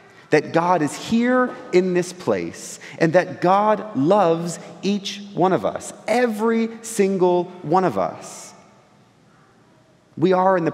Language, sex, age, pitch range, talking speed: English, male, 30-49, 140-195 Hz, 135 wpm